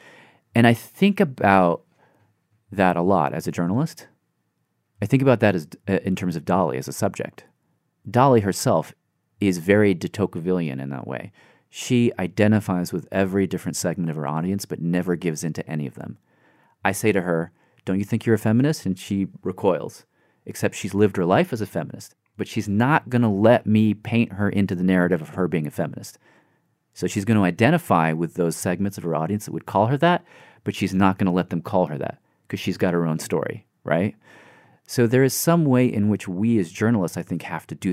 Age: 40-59